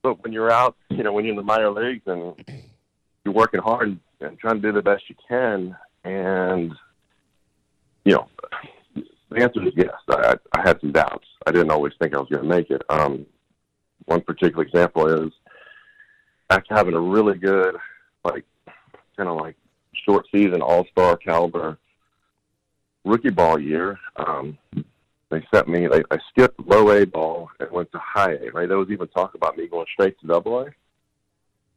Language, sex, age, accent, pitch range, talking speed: English, male, 40-59, American, 90-115 Hz, 180 wpm